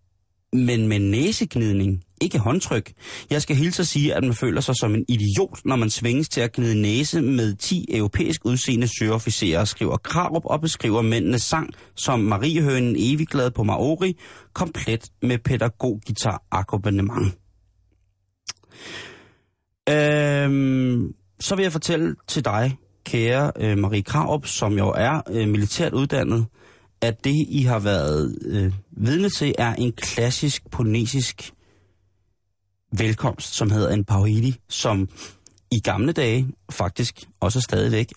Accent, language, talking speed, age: native, Danish, 130 wpm, 30-49